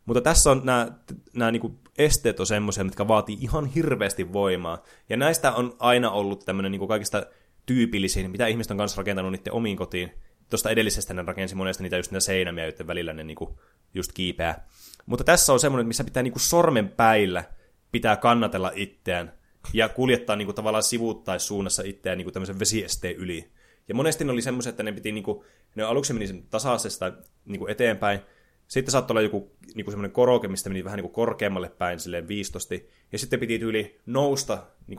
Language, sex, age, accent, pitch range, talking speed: Finnish, male, 20-39, native, 90-115 Hz, 175 wpm